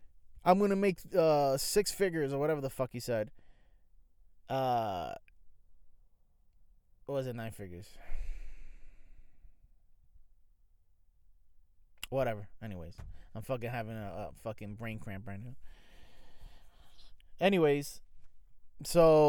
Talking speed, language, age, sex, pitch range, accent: 100 wpm, English, 20-39, male, 90-135 Hz, American